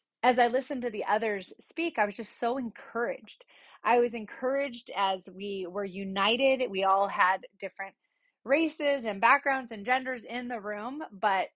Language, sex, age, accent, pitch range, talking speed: English, female, 30-49, American, 195-240 Hz, 165 wpm